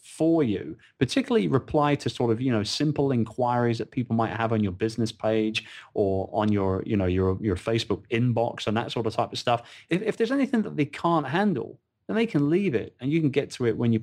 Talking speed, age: 240 wpm, 30-49